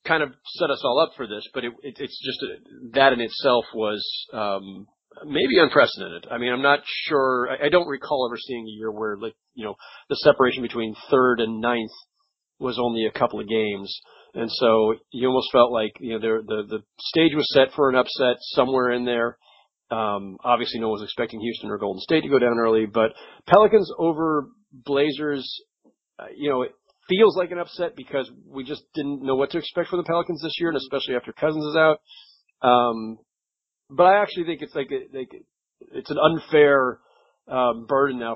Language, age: English, 40-59